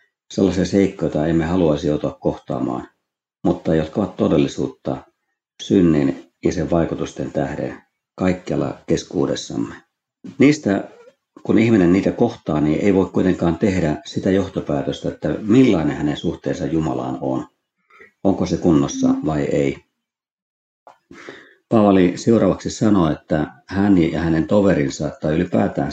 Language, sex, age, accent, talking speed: Finnish, male, 50-69, native, 120 wpm